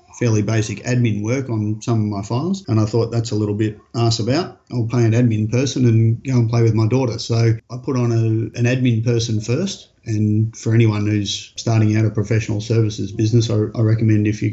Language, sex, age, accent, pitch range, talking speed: English, male, 30-49, Australian, 105-115 Hz, 225 wpm